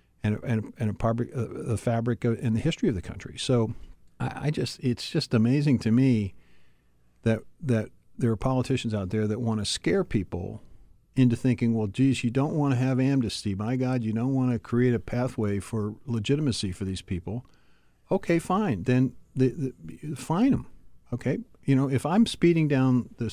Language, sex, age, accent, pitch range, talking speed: English, male, 50-69, American, 110-130 Hz, 185 wpm